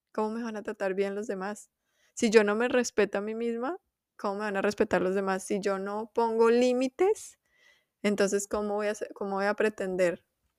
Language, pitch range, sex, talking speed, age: Spanish, 185-220 Hz, female, 210 wpm, 20-39